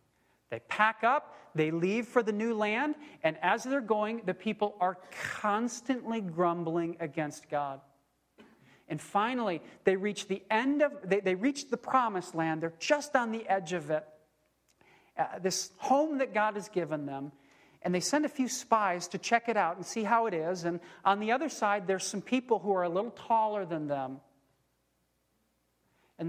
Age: 40-59